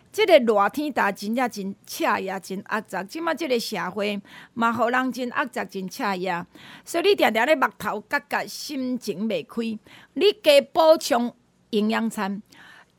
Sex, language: female, Chinese